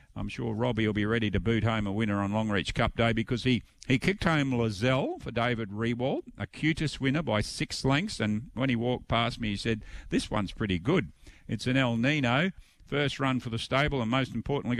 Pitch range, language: 105-130 Hz, English